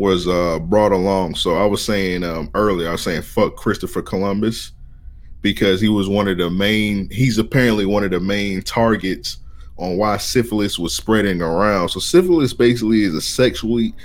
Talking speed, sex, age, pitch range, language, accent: 180 wpm, male, 20-39, 90-115 Hz, English, American